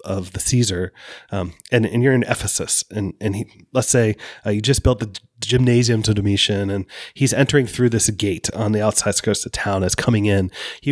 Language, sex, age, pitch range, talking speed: English, male, 30-49, 100-120 Hz, 215 wpm